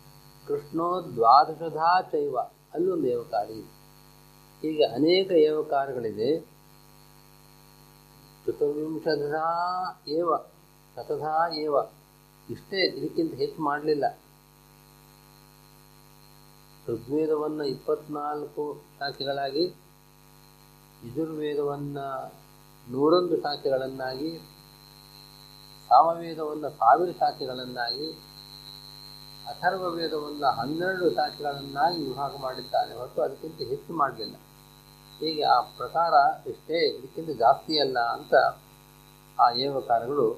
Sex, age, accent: male, 40-59, native